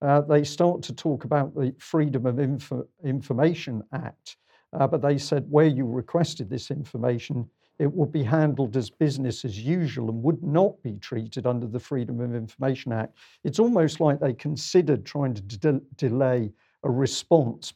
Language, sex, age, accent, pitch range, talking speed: English, male, 50-69, British, 120-150 Hz, 165 wpm